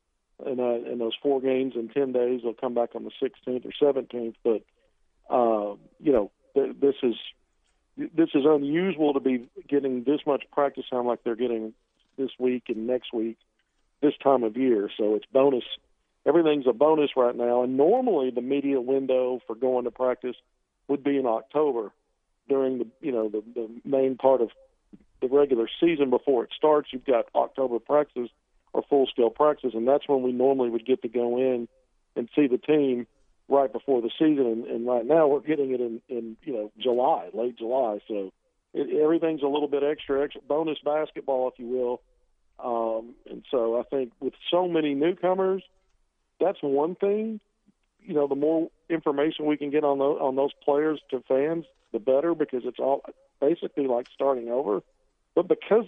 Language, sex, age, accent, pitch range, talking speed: English, male, 50-69, American, 125-150 Hz, 185 wpm